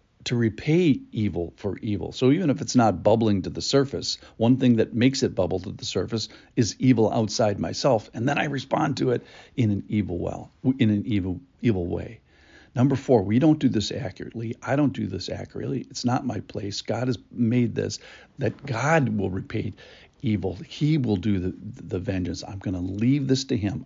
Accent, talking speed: American, 200 wpm